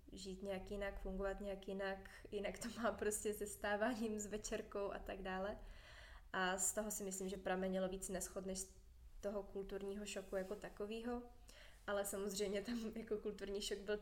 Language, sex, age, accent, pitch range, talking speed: Czech, female, 20-39, native, 195-215 Hz, 165 wpm